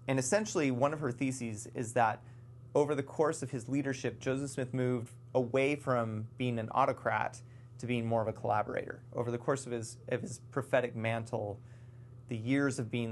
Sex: male